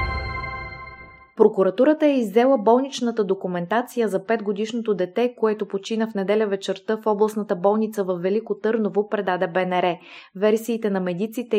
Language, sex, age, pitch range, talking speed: Bulgarian, female, 20-39, 195-225 Hz, 125 wpm